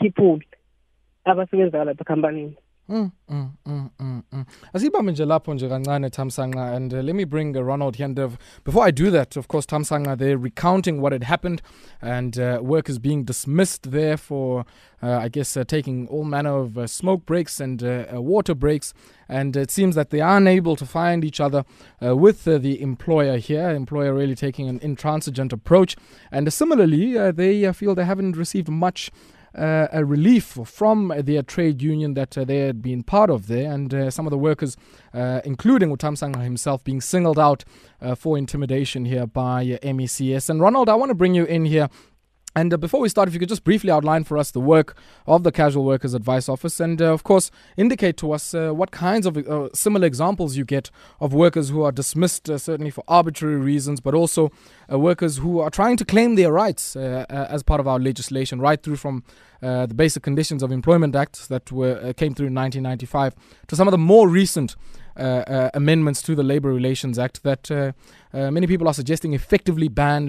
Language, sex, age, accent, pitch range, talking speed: English, male, 20-39, South African, 130-170 Hz, 195 wpm